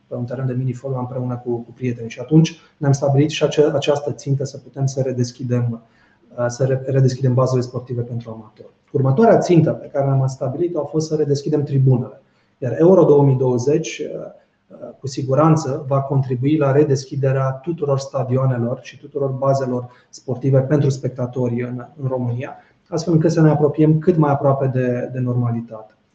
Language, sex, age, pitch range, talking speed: Romanian, male, 30-49, 130-150 Hz, 155 wpm